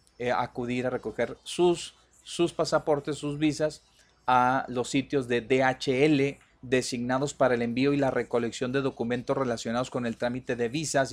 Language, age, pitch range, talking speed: Spanish, 40-59, 125-180 Hz, 155 wpm